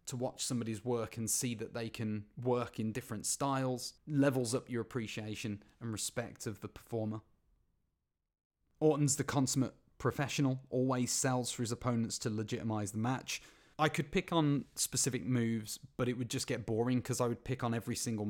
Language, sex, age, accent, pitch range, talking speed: English, male, 30-49, British, 110-125 Hz, 175 wpm